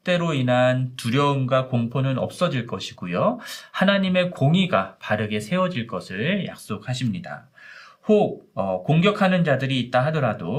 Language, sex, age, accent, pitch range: Korean, male, 40-59, native, 125-180 Hz